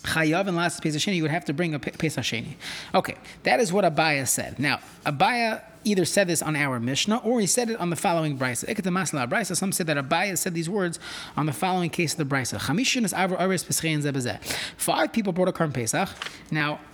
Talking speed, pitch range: 175 wpm, 140-180 Hz